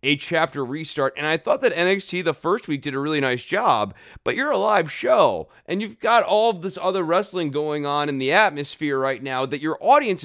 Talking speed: 220 wpm